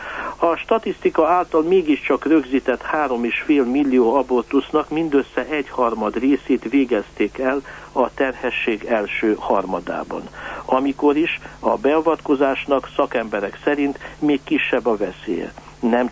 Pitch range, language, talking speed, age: 125-150 Hz, Hungarian, 110 wpm, 60-79